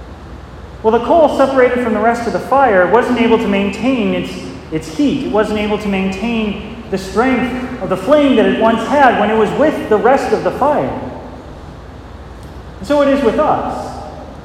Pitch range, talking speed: 200-255 Hz, 190 wpm